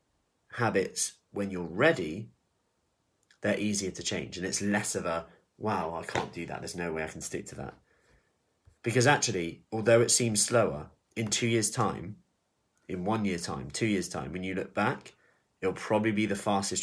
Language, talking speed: English, 185 wpm